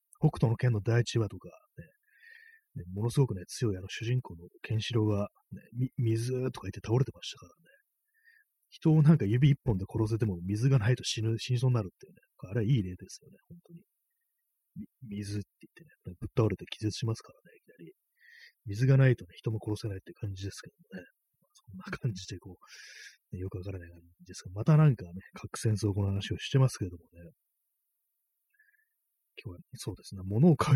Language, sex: Japanese, male